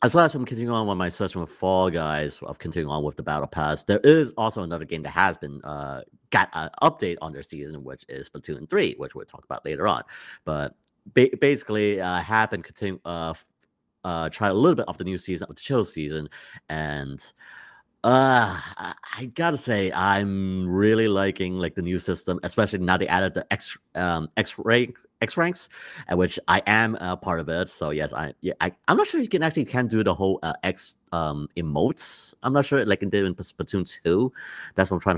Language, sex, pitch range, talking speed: English, male, 80-105 Hz, 215 wpm